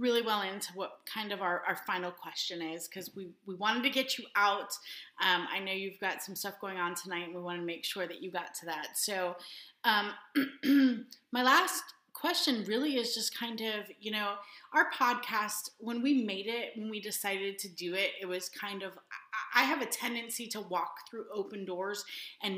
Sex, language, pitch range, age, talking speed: female, English, 190-230 Hz, 30-49, 205 wpm